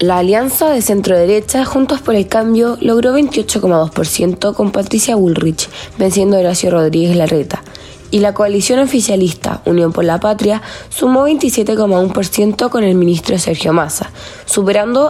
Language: Spanish